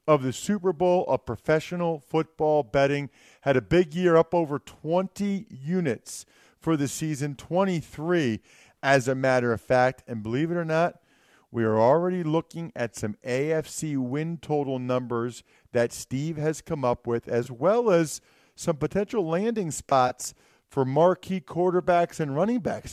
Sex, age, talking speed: male, 40-59, 155 wpm